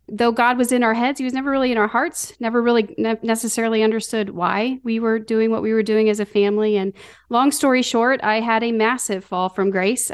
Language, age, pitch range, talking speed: English, 40-59, 200-225 Hz, 230 wpm